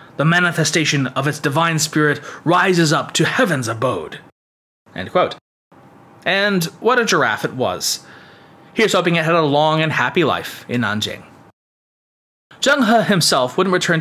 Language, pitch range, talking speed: English, 140-180 Hz, 145 wpm